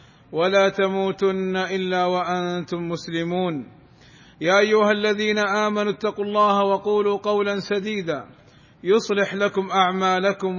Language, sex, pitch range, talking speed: Arabic, male, 185-210 Hz, 95 wpm